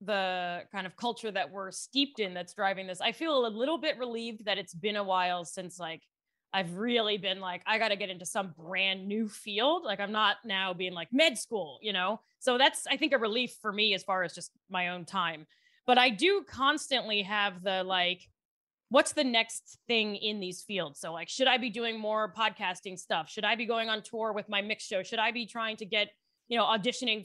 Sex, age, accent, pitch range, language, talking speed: female, 20-39, American, 185-235 Hz, English, 230 wpm